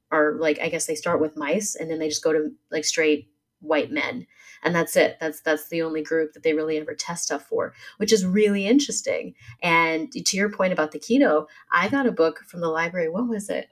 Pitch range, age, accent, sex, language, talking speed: 160-220 Hz, 30-49, American, female, English, 235 wpm